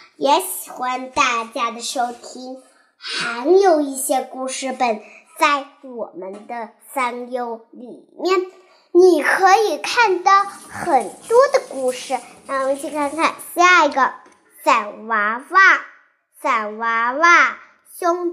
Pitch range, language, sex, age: 250-350 Hz, Chinese, male, 10-29